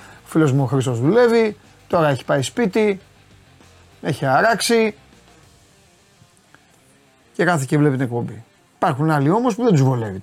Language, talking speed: Greek, 155 wpm